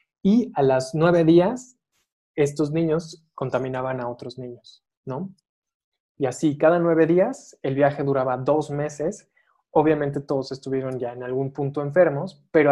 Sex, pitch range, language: male, 135-170 Hz, Spanish